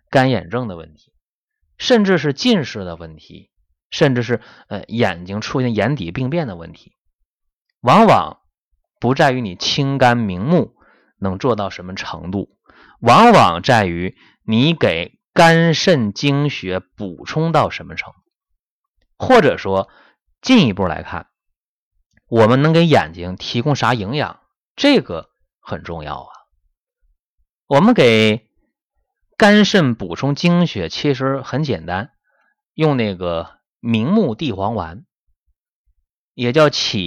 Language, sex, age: Chinese, male, 30-49